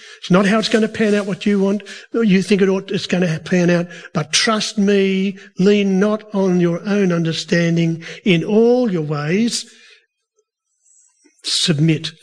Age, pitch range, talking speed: 50-69, 165-225 Hz, 170 wpm